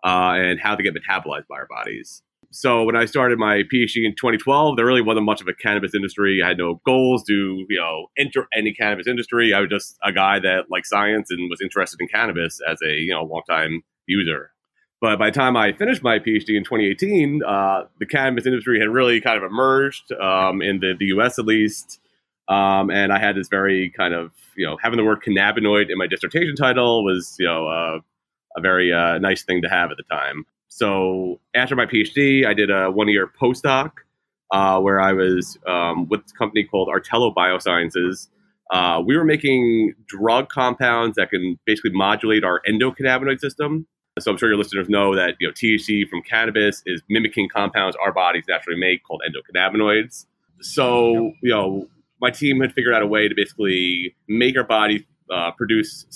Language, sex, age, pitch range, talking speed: Hebrew, male, 30-49, 95-120 Hz, 200 wpm